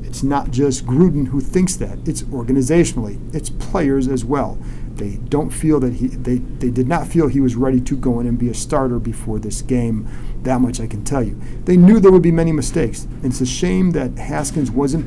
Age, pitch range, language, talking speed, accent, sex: 40-59, 125-145 Hz, English, 220 wpm, American, male